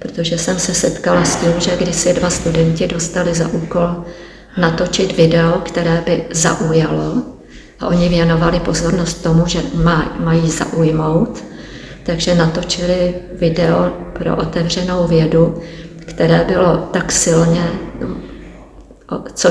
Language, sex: Czech, female